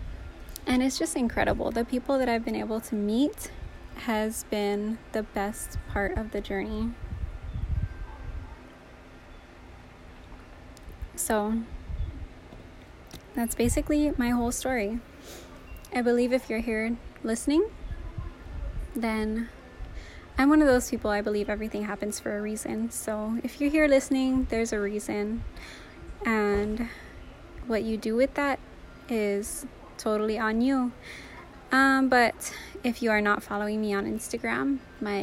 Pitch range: 205-250 Hz